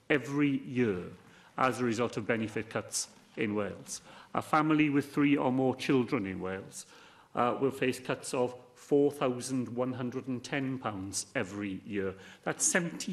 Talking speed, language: 130 wpm, English